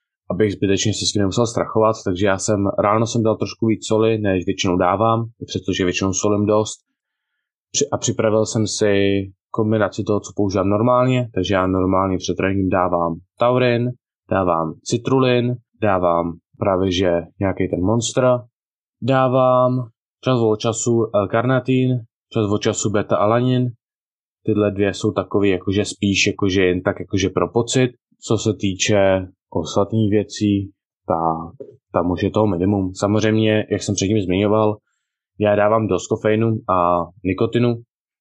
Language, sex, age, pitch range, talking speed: Czech, male, 20-39, 95-110 Hz, 145 wpm